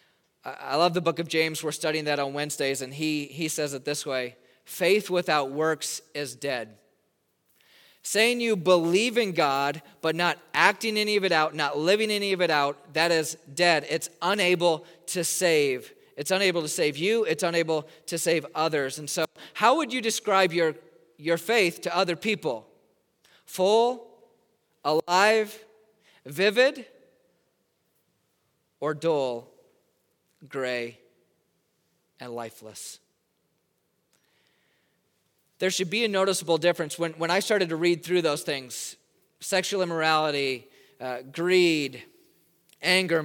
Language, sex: English, male